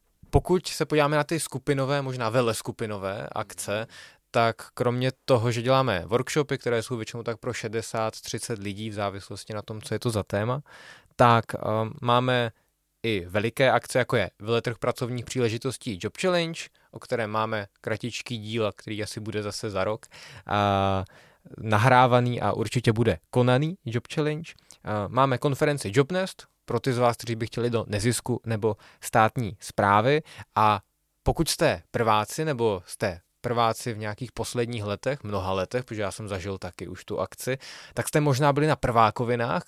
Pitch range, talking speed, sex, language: 105-130 Hz, 160 wpm, male, Czech